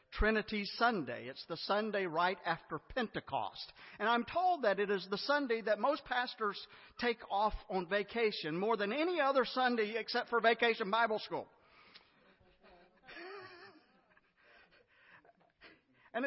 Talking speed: 125 wpm